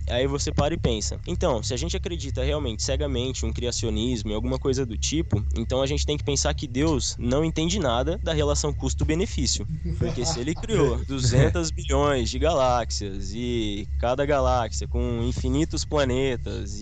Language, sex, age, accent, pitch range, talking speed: Portuguese, male, 20-39, Brazilian, 110-140 Hz, 170 wpm